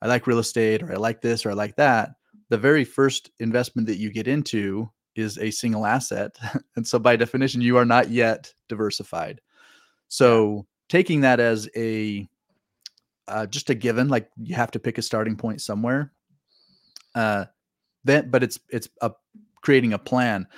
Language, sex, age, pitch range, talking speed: English, male, 30-49, 110-130 Hz, 175 wpm